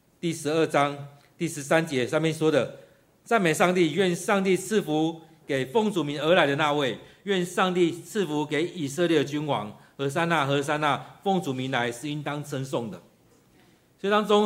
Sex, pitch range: male, 140-175 Hz